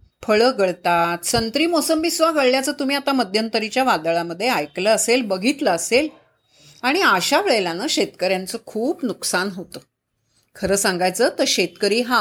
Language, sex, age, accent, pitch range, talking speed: Marathi, female, 30-49, native, 195-275 Hz, 125 wpm